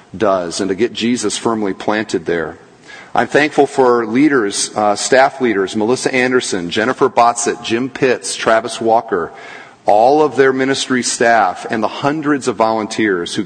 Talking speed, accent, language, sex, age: 150 wpm, American, English, male, 40-59